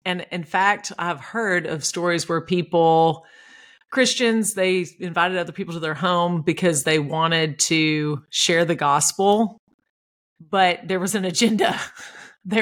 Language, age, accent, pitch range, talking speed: English, 40-59, American, 165-200 Hz, 145 wpm